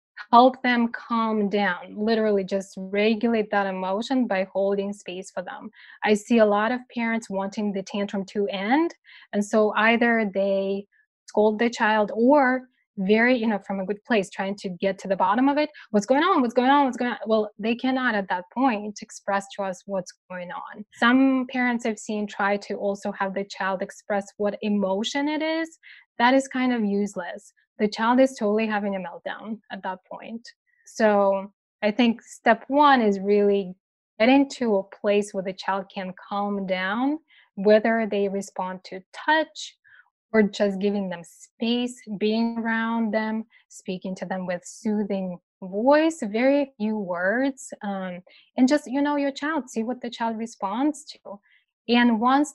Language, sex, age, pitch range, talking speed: English, female, 10-29, 200-250 Hz, 175 wpm